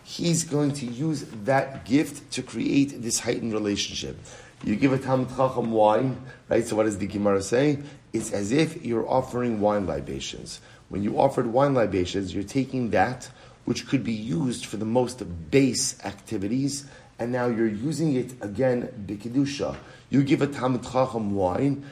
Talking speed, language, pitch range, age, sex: 160 wpm, English, 105-135 Hz, 30-49, male